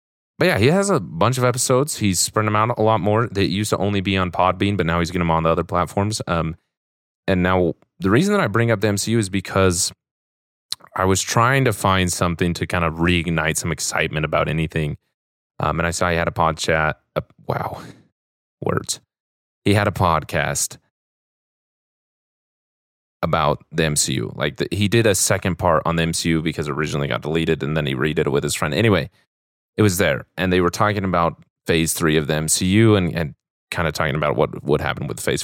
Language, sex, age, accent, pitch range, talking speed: English, male, 30-49, American, 80-105 Hz, 210 wpm